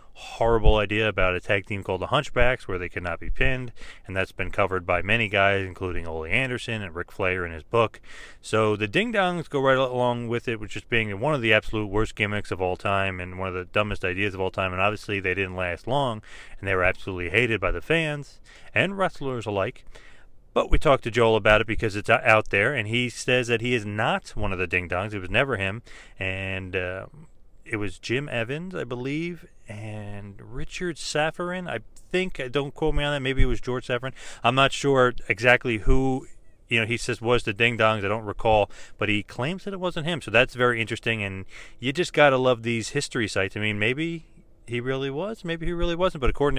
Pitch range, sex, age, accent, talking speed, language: 100-130 Hz, male, 30-49, American, 225 wpm, English